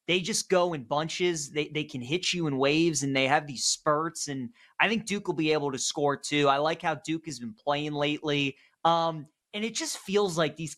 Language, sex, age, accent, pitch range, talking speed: English, male, 20-39, American, 140-170 Hz, 235 wpm